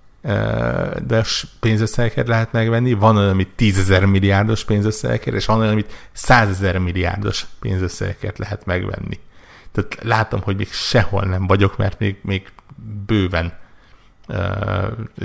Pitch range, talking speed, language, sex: 90-110 Hz, 120 wpm, Hungarian, male